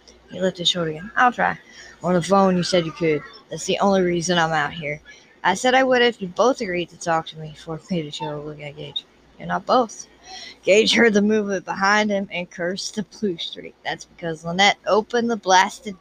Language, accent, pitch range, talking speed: English, American, 170-215 Hz, 230 wpm